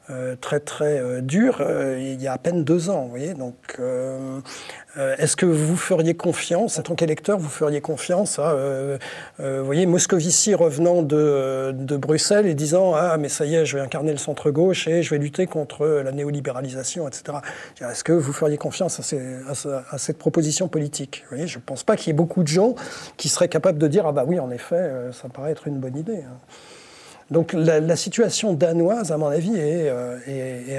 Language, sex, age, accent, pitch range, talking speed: French, male, 40-59, French, 135-170 Hz, 220 wpm